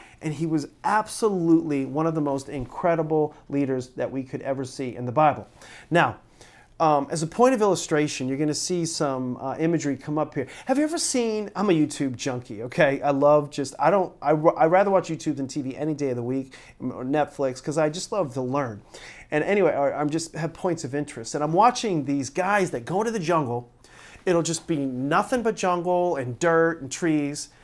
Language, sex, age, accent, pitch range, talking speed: English, male, 40-59, American, 140-205 Hz, 210 wpm